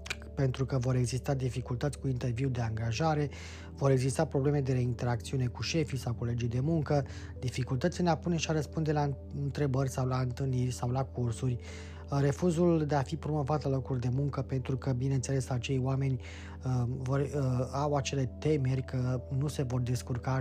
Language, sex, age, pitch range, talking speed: Romanian, male, 20-39, 120-140 Hz, 175 wpm